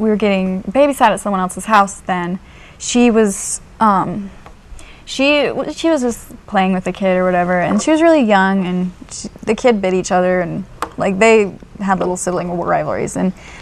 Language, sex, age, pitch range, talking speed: English, female, 20-39, 185-220 Hz, 185 wpm